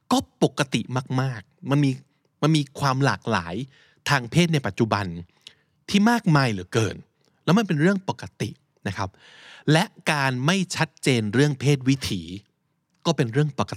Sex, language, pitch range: male, Thai, 105-150 Hz